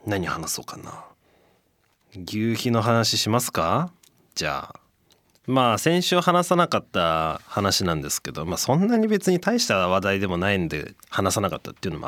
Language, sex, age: Japanese, male, 20-39